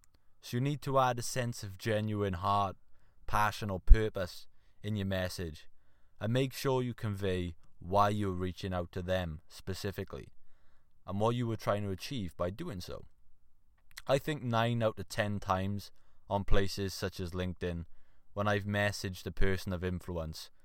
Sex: male